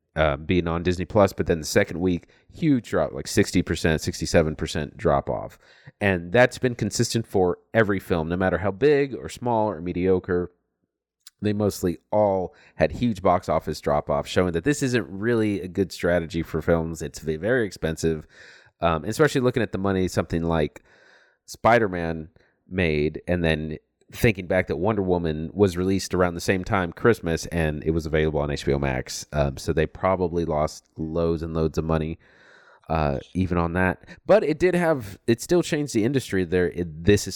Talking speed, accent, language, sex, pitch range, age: 175 wpm, American, English, male, 80-105 Hz, 30-49